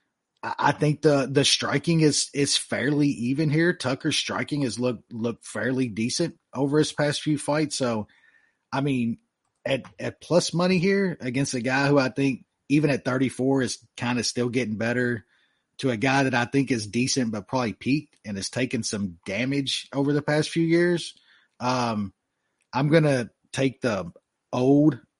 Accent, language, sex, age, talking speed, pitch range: American, English, male, 30-49, 175 wpm, 115-150 Hz